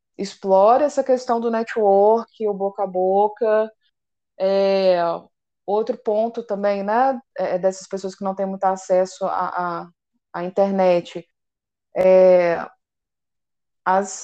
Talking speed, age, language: 120 wpm, 20-39, Portuguese